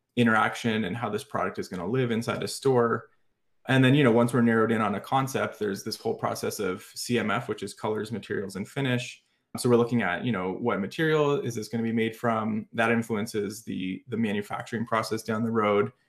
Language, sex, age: English, male, 20-39